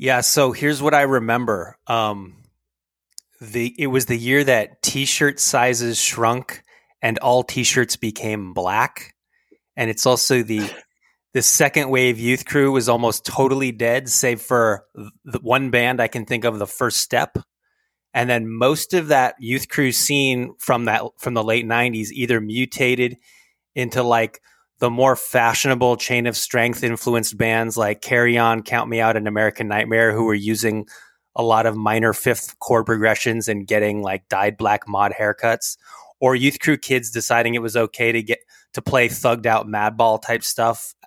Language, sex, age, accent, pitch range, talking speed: English, male, 20-39, American, 110-125 Hz, 170 wpm